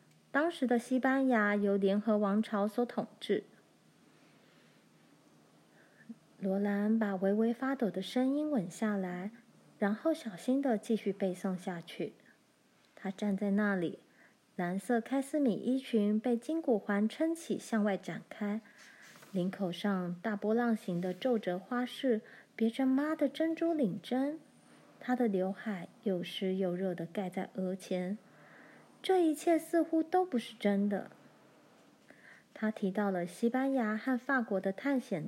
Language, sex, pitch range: Chinese, female, 195-260 Hz